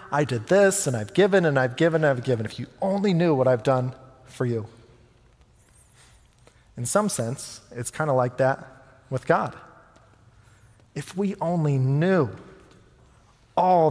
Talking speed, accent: 155 wpm, American